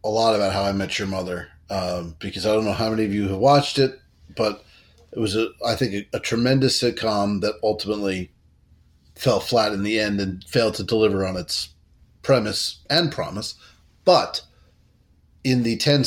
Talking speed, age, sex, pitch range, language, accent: 185 wpm, 30-49, male, 100-120 Hz, English, American